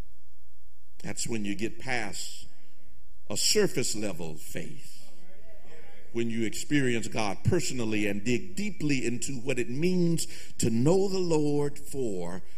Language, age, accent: English, 50-69, American